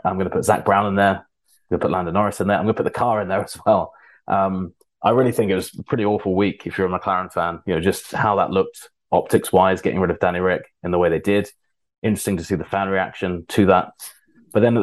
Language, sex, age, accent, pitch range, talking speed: English, male, 20-39, British, 90-105 Hz, 285 wpm